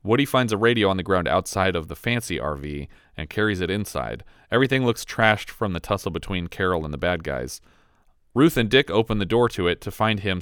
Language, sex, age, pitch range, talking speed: English, male, 30-49, 85-110 Hz, 225 wpm